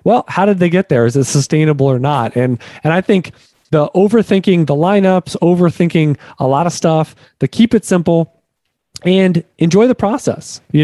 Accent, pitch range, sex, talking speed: American, 145-175 Hz, male, 185 wpm